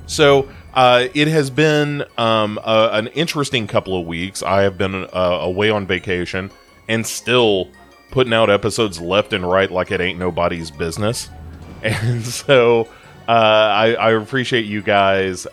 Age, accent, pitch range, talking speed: 30-49, American, 90-110 Hz, 150 wpm